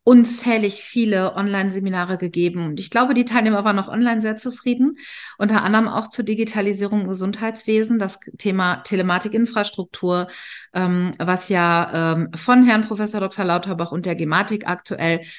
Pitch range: 185-220 Hz